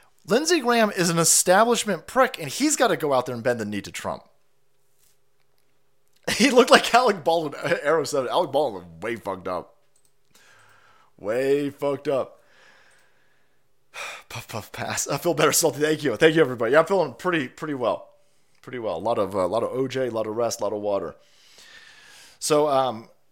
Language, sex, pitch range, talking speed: English, male, 135-205 Hz, 185 wpm